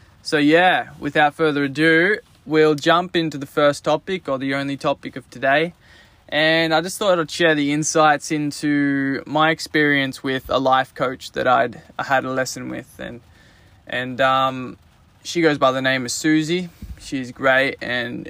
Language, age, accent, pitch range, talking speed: English, 20-39, Australian, 125-155 Hz, 175 wpm